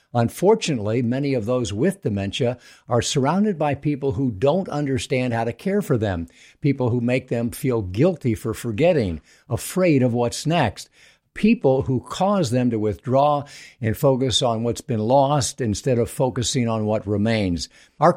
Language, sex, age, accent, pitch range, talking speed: English, male, 50-69, American, 115-145 Hz, 160 wpm